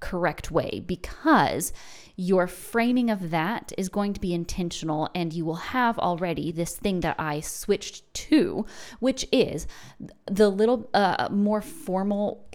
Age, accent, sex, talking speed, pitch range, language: 20-39, American, female, 145 wpm, 170-210 Hz, English